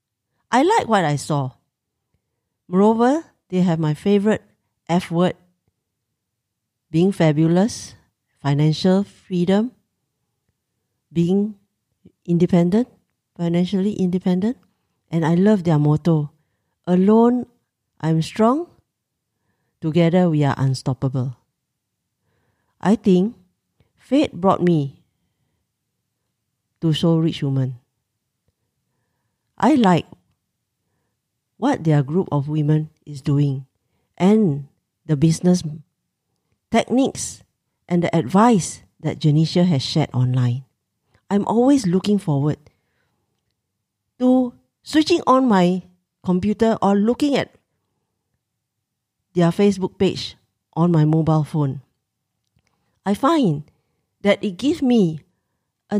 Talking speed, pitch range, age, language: 95 wpm, 135-195 Hz, 50-69, English